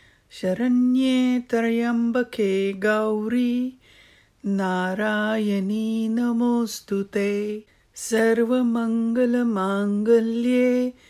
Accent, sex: Indian, female